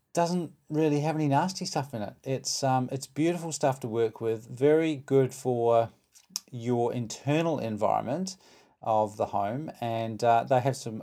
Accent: Australian